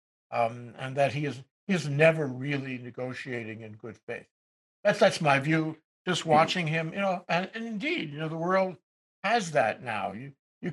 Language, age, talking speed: English, 60-79, 190 wpm